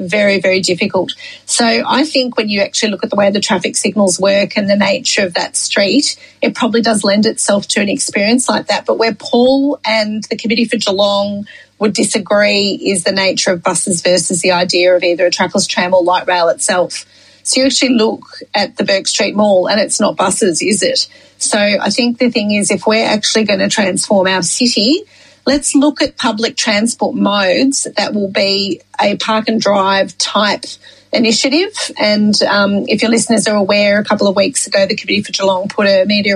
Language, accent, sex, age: English, Australian, female, 30-49